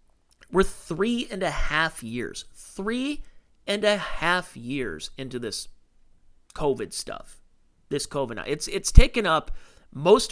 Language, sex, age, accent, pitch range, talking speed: English, male, 30-49, American, 120-170 Hz, 130 wpm